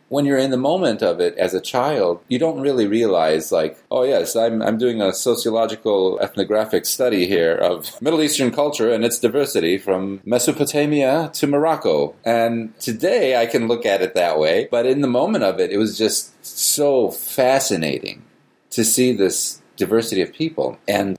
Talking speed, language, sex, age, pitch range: 180 wpm, English, male, 30-49, 100-125 Hz